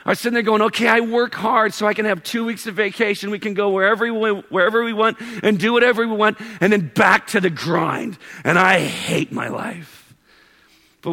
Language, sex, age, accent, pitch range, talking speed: English, male, 50-69, American, 160-220 Hz, 220 wpm